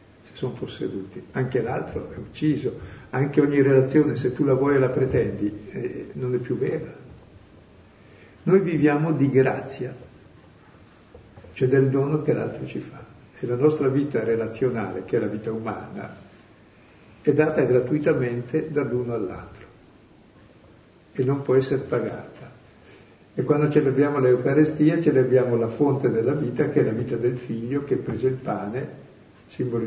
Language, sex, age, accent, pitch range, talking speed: Italian, male, 60-79, native, 110-145 Hz, 150 wpm